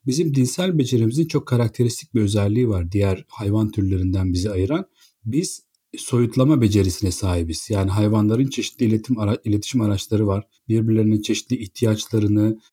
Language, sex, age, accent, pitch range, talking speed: Turkish, male, 40-59, native, 105-135 Hz, 125 wpm